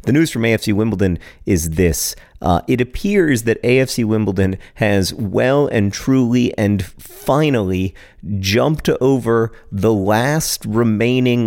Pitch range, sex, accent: 90-115 Hz, male, American